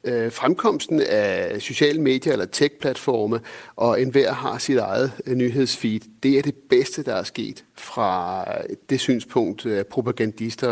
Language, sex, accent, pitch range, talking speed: Danish, male, native, 115-140 Hz, 140 wpm